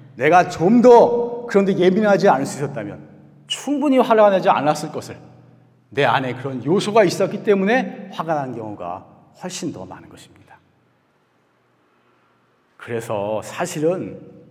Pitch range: 120-185 Hz